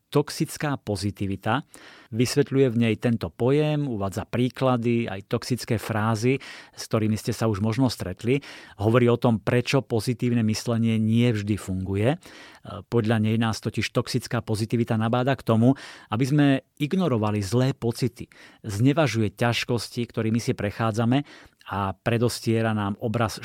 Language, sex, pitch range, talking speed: Slovak, male, 110-125 Hz, 130 wpm